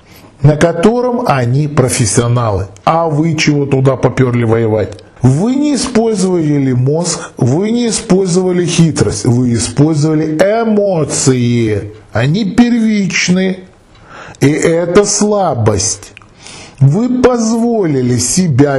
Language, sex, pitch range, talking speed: Russian, male, 130-175 Hz, 95 wpm